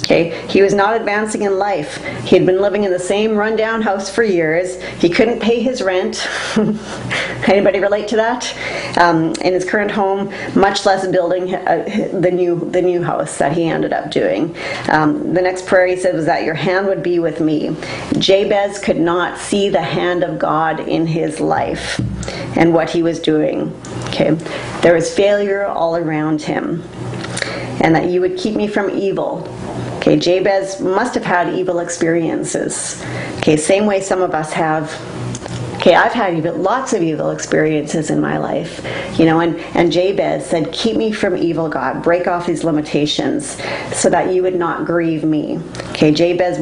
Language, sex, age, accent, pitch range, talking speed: English, female, 40-59, American, 165-195 Hz, 180 wpm